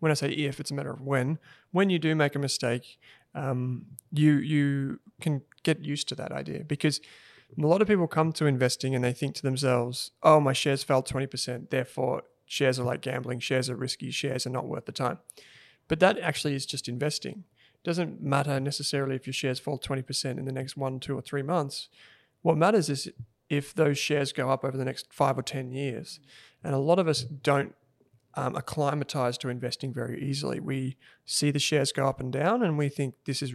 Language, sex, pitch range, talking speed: English, male, 130-150 Hz, 215 wpm